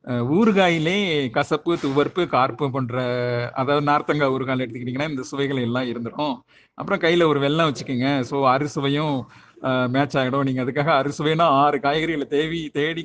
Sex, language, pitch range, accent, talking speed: male, Tamil, 130-160 Hz, native, 145 wpm